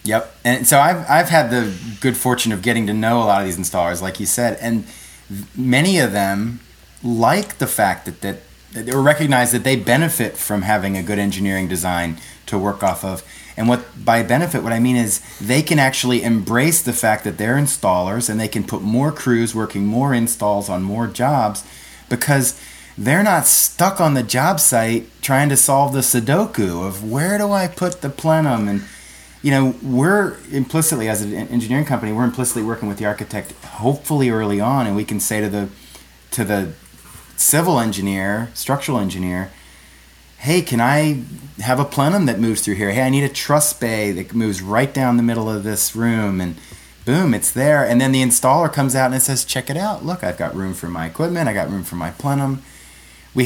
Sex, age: male, 30-49